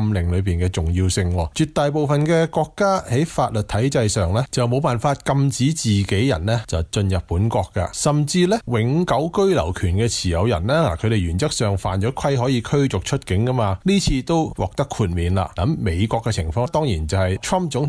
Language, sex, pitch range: Chinese, male, 95-140 Hz